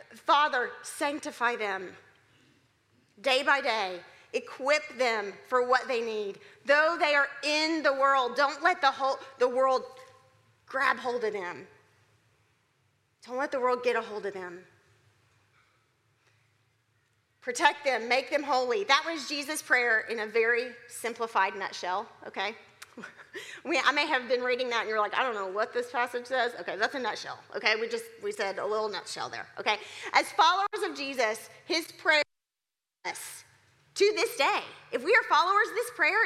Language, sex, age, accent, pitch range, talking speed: English, female, 40-59, American, 195-300 Hz, 165 wpm